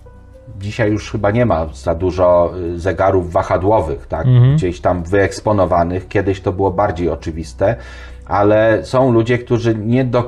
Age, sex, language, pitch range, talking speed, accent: 30-49, male, Polish, 100-130 Hz, 140 wpm, native